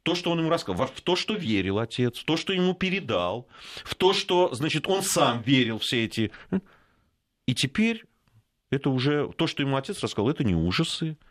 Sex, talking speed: male, 195 wpm